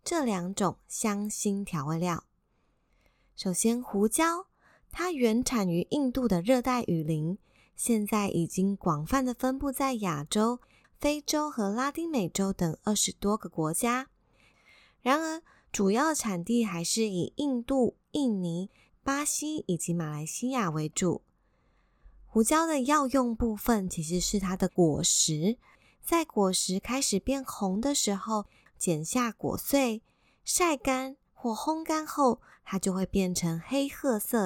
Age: 20-39